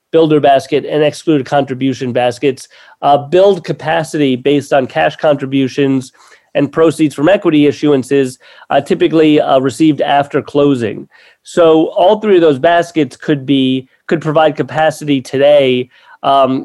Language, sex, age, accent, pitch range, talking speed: English, male, 30-49, American, 135-160 Hz, 135 wpm